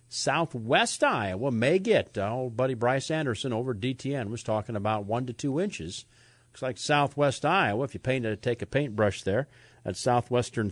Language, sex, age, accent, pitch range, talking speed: English, male, 50-69, American, 100-130 Hz, 185 wpm